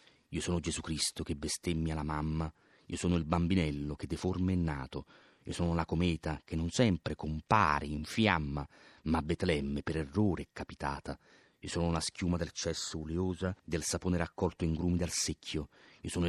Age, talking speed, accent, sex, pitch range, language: 30-49, 175 wpm, native, male, 80-90 Hz, Italian